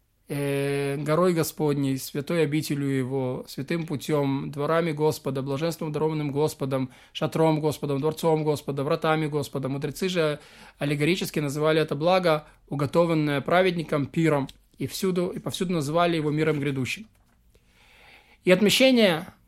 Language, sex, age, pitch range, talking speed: Russian, male, 20-39, 150-185 Hz, 115 wpm